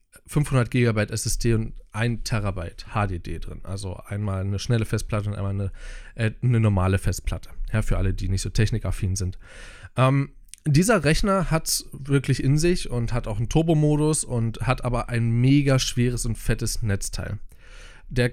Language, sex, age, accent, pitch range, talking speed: German, male, 20-39, German, 105-130 Hz, 160 wpm